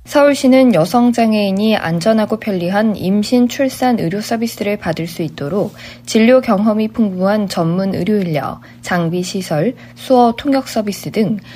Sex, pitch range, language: female, 180-240 Hz, Korean